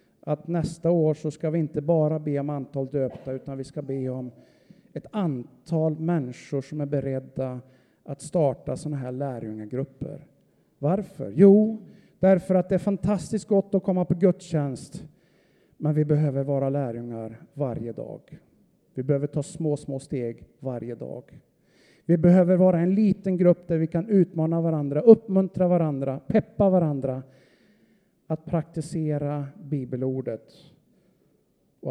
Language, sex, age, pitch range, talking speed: Swedish, male, 50-69, 135-175 Hz, 140 wpm